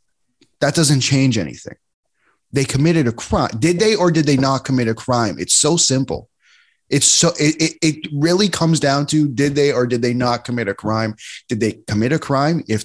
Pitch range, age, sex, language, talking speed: 115-150 Hz, 20-39, male, English, 205 wpm